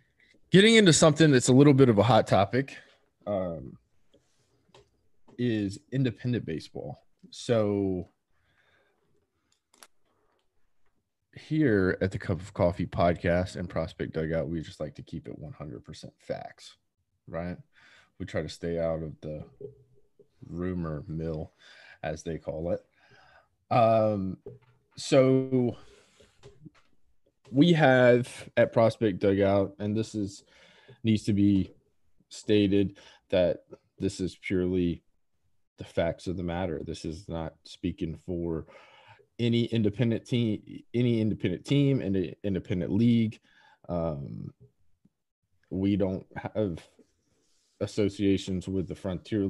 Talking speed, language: 115 wpm, English